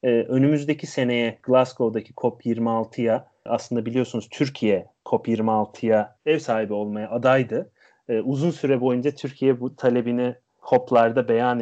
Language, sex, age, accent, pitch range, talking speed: Turkish, male, 30-49, native, 115-145 Hz, 105 wpm